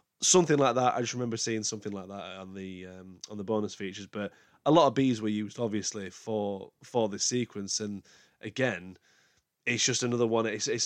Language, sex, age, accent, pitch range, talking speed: English, male, 20-39, British, 105-120 Hz, 205 wpm